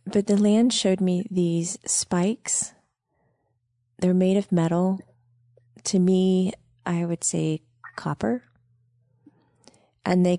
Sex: female